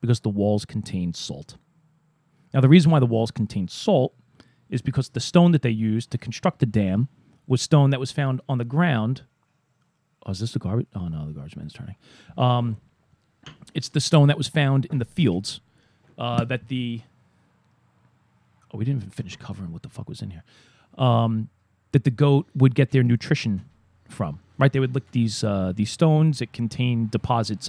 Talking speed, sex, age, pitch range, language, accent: 195 wpm, male, 40-59, 115-145 Hz, English, American